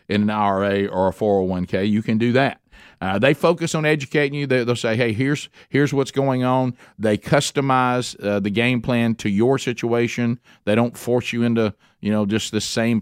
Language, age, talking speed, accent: English, 50-69, 205 wpm, American